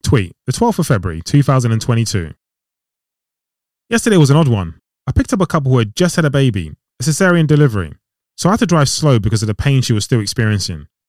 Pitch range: 110-145 Hz